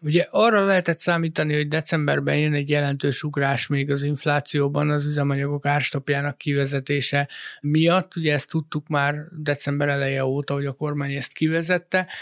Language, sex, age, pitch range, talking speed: Hungarian, male, 60-79, 145-165 Hz, 145 wpm